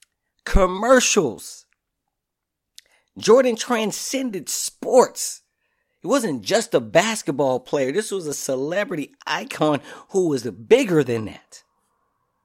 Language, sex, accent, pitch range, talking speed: English, male, American, 170-250 Hz, 95 wpm